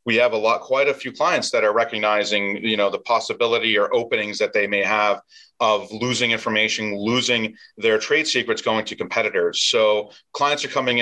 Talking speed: 190 wpm